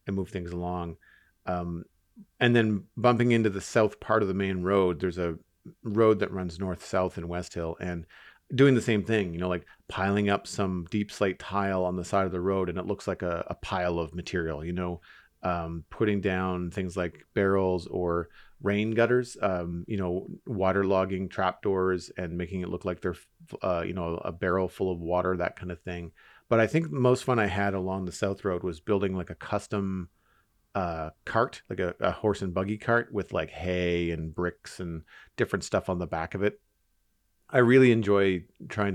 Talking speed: 205 wpm